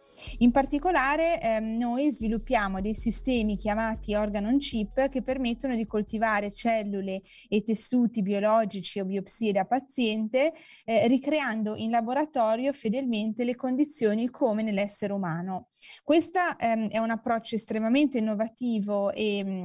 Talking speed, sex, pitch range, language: 120 wpm, female, 205-250 Hz, Italian